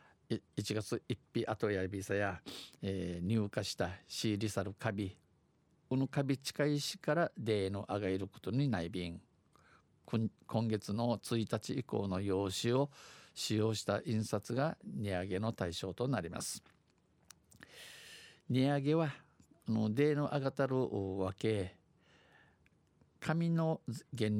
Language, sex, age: Japanese, male, 50-69